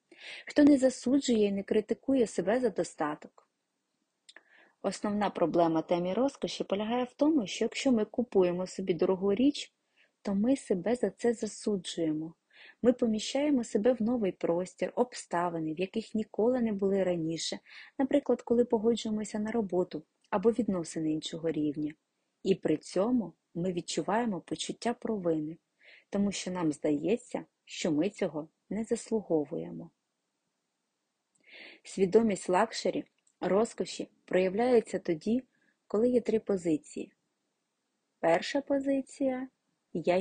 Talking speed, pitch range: 120 wpm, 175-245 Hz